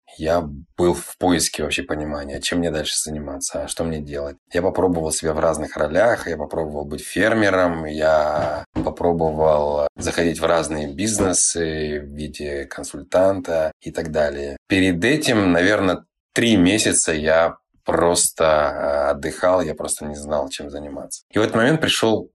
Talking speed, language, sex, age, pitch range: 145 wpm, Russian, male, 20-39, 75-85 Hz